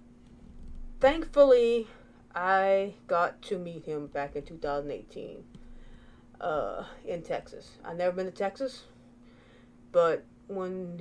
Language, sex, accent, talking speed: English, female, American, 105 wpm